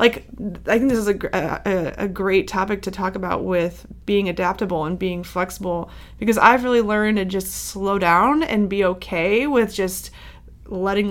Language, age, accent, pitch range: English, 20-39, American, 185-215 Hz